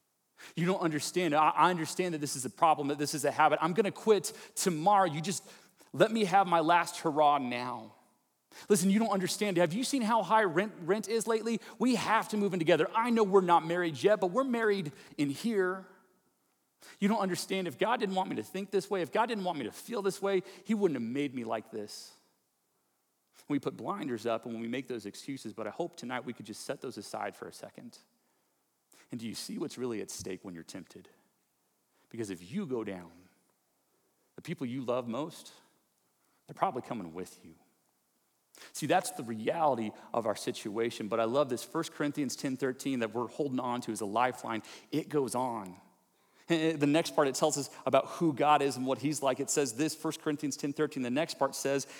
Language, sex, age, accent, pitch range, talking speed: English, male, 30-49, American, 130-190 Hz, 215 wpm